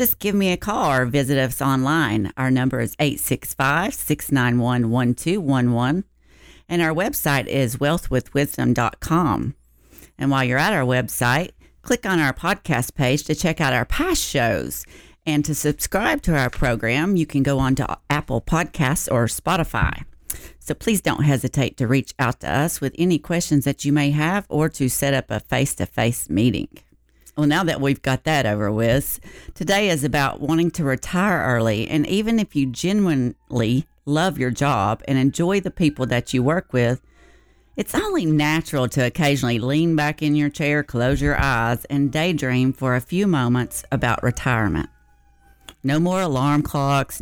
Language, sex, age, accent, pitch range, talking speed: English, female, 40-59, American, 125-155 Hz, 165 wpm